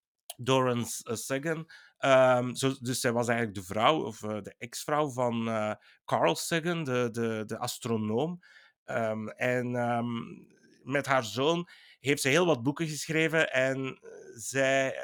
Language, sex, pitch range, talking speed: Dutch, male, 120-145 Hz, 145 wpm